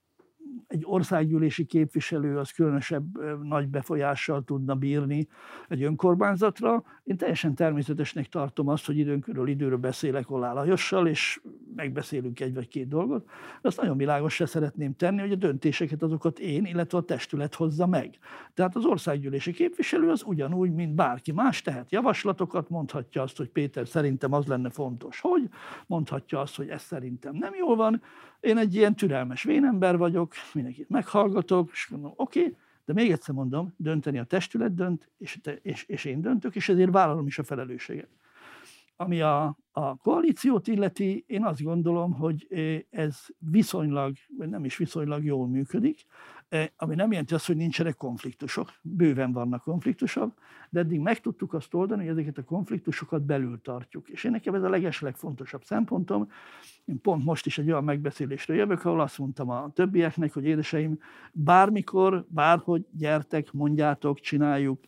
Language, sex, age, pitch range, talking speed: Hungarian, male, 60-79, 145-190 Hz, 155 wpm